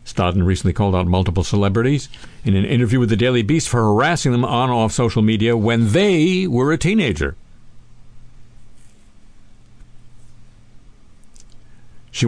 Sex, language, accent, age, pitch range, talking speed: male, English, American, 50-69, 100-130 Hz, 130 wpm